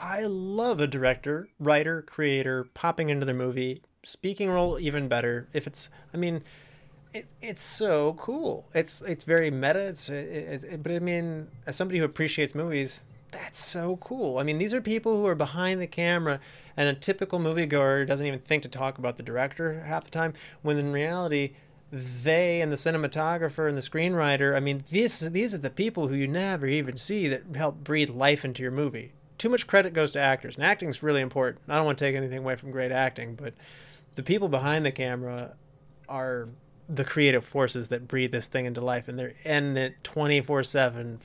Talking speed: 200 wpm